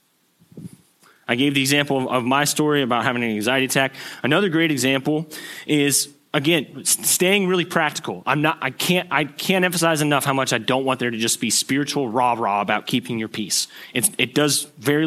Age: 30-49